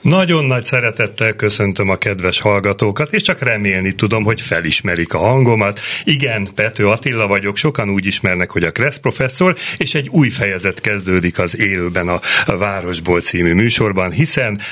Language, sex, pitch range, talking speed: Hungarian, male, 100-125 Hz, 155 wpm